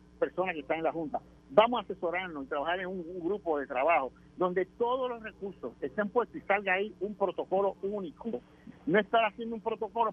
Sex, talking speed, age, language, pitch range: male, 200 wpm, 50-69, Spanish, 155-210 Hz